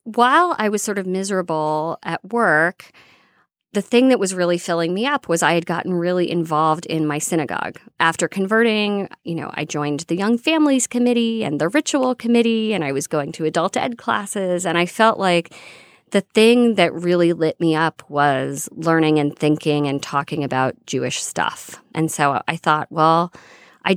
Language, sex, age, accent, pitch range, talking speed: English, female, 40-59, American, 155-190 Hz, 185 wpm